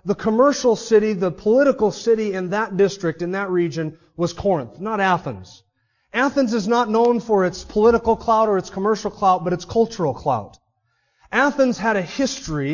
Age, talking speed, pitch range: 30-49, 170 wpm, 155-220 Hz